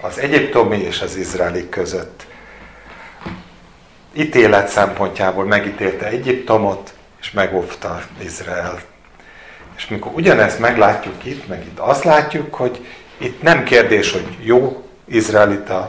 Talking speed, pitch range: 110 wpm, 100-130 Hz